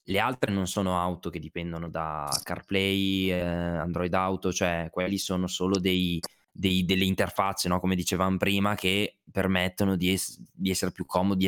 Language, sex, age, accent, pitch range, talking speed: Italian, male, 20-39, native, 90-120 Hz, 165 wpm